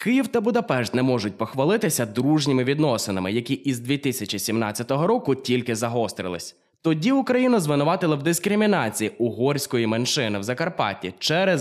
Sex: male